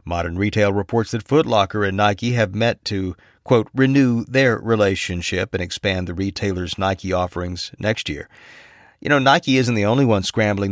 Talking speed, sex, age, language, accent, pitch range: 170 wpm, male, 50-69, English, American, 95-115 Hz